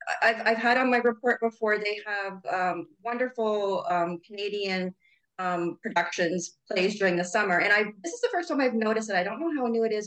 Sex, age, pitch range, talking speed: female, 30-49, 190-235 Hz, 215 wpm